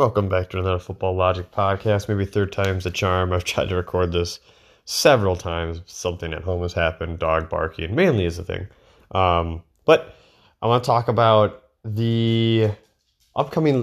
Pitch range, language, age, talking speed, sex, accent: 90-110 Hz, English, 20-39, 170 wpm, male, American